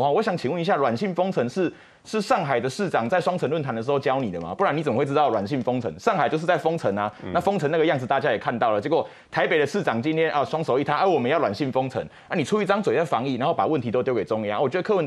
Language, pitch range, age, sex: Chinese, 125-210 Hz, 20-39, male